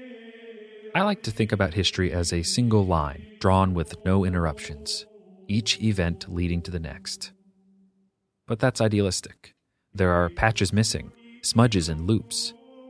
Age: 30-49